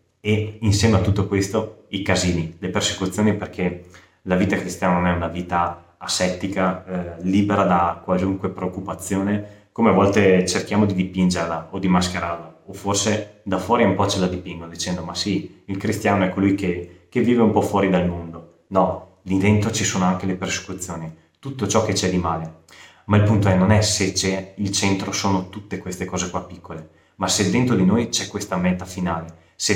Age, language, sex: 20-39, Italian, male